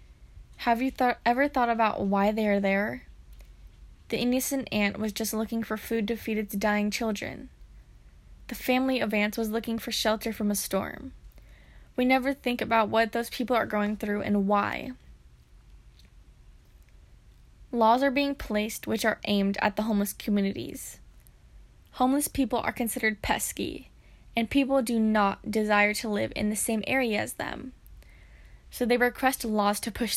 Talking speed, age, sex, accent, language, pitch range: 160 wpm, 10-29, female, American, English, 205-245 Hz